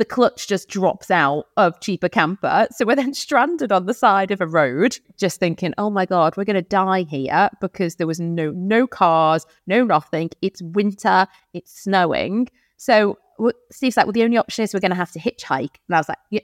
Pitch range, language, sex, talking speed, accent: 170-230 Hz, English, female, 210 wpm, British